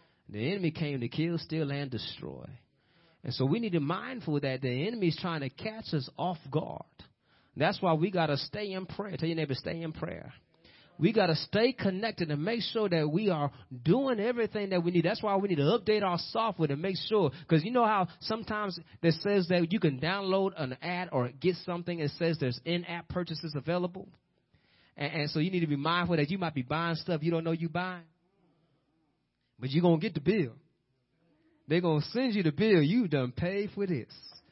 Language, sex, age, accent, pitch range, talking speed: English, male, 30-49, American, 145-185 Hz, 220 wpm